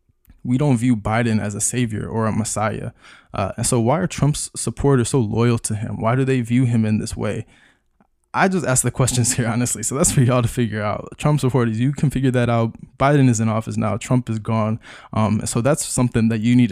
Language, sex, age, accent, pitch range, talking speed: English, male, 20-39, American, 115-130 Hz, 235 wpm